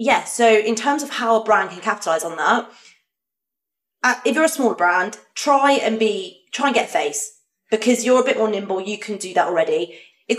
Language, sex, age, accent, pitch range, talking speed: English, female, 20-39, British, 190-235 Hz, 215 wpm